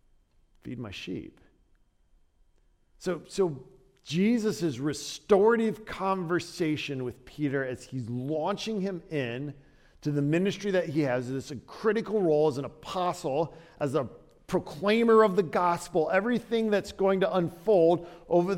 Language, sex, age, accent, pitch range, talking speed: English, male, 40-59, American, 150-190 Hz, 130 wpm